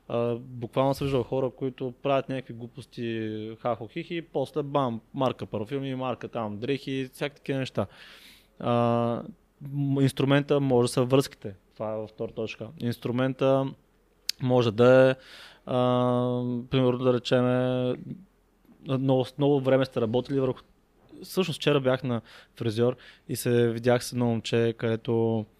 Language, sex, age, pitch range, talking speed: Bulgarian, male, 20-39, 115-135 Hz, 135 wpm